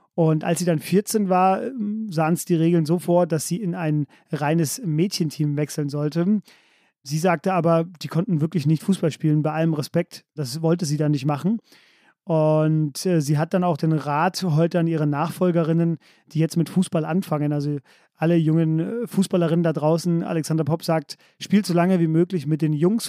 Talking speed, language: 185 wpm, German